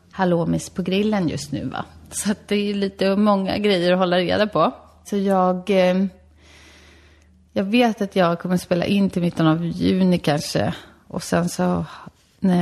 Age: 30-49